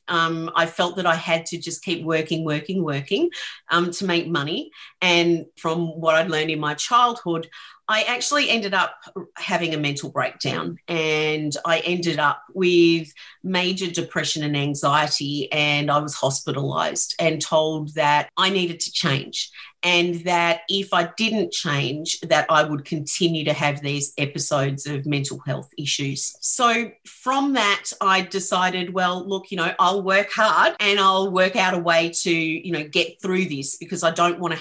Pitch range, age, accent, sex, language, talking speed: 155-195 Hz, 40-59, Australian, female, English, 170 wpm